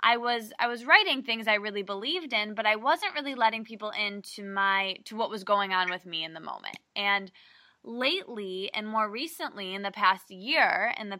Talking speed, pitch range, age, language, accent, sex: 210 wpm, 195-250 Hz, 20-39, English, American, female